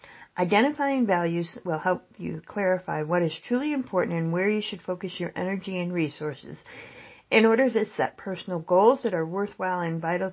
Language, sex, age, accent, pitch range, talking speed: English, female, 50-69, American, 170-220 Hz, 175 wpm